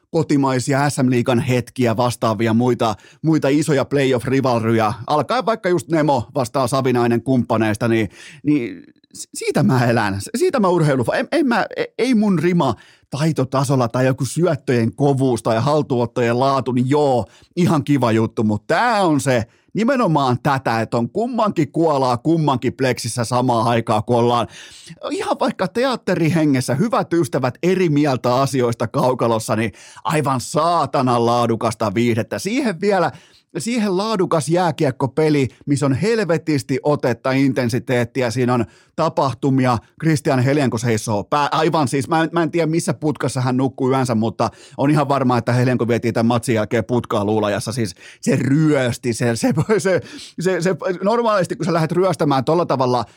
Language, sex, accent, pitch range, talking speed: Finnish, male, native, 120-160 Hz, 145 wpm